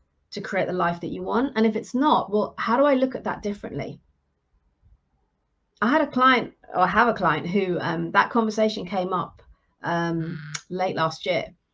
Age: 30-49